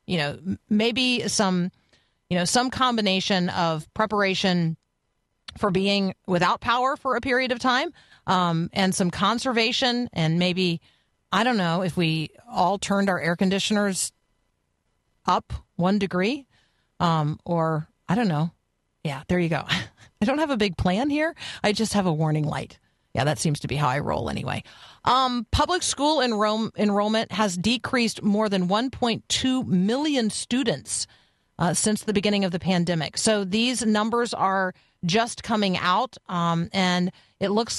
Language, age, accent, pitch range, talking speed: English, 40-59, American, 180-220 Hz, 155 wpm